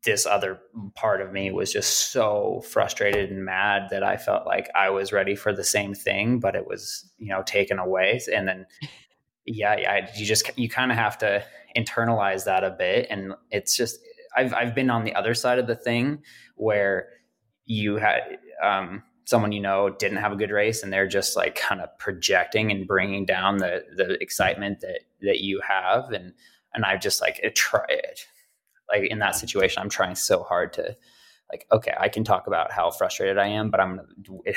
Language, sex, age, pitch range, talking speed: English, male, 20-39, 95-135 Hz, 200 wpm